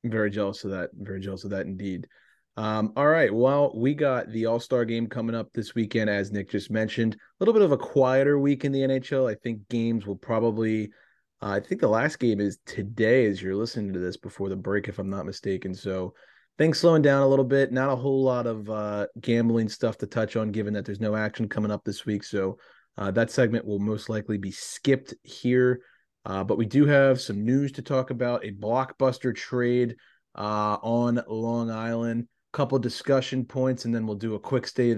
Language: English